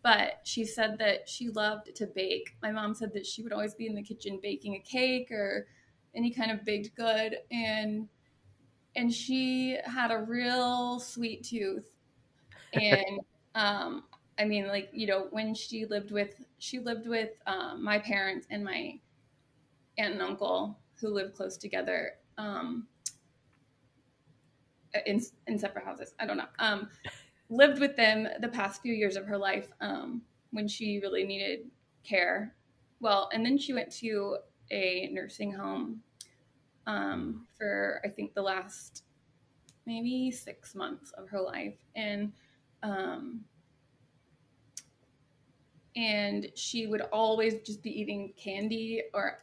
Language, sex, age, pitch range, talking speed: English, female, 20-39, 195-230 Hz, 145 wpm